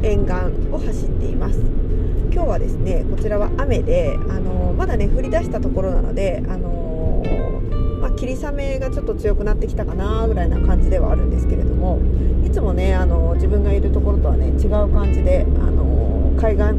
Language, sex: Japanese, female